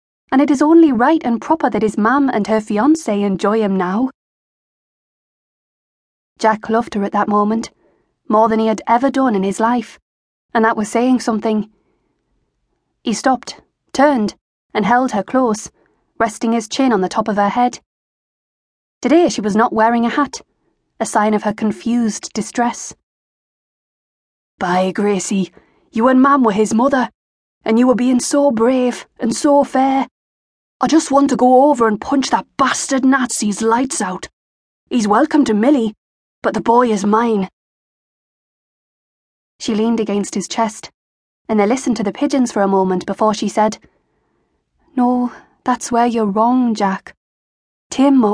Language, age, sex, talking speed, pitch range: English, 20-39, female, 160 wpm, 215-265 Hz